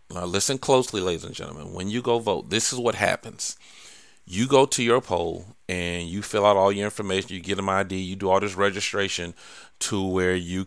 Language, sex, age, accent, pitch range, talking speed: English, male, 40-59, American, 90-115 Hz, 215 wpm